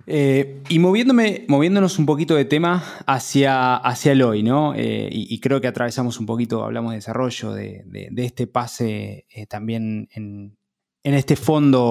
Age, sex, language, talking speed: 20-39, male, Spanish, 175 wpm